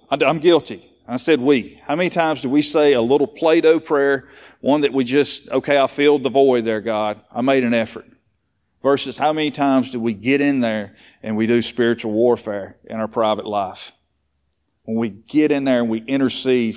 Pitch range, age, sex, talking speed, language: 110-150 Hz, 40-59, male, 200 wpm, English